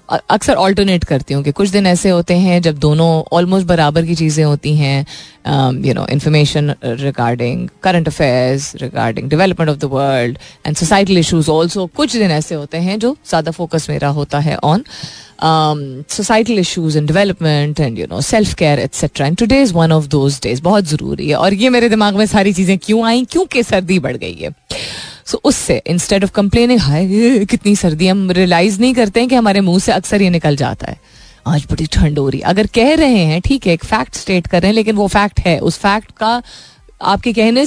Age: 30-49